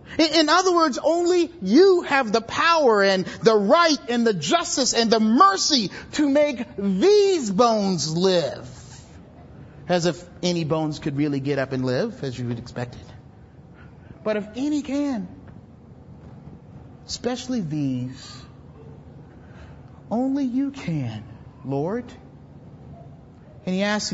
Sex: male